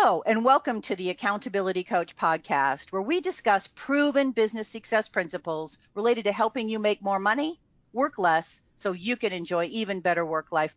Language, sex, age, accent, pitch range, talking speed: English, female, 50-69, American, 180-235 Hz, 180 wpm